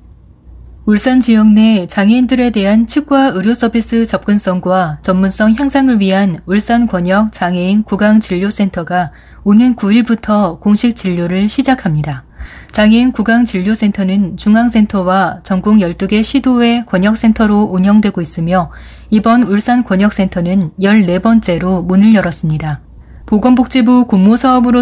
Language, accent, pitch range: Korean, native, 185-230 Hz